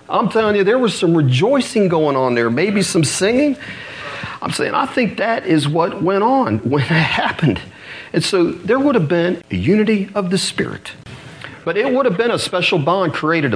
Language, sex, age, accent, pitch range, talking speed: English, male, 40-59, American, 135-200 Hz, 200 wpm